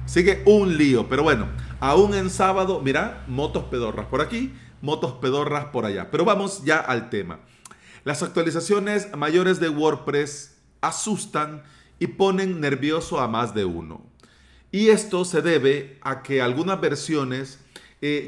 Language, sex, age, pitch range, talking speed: Spanish, male, 40-59, 130-165 Hz, 145 wpm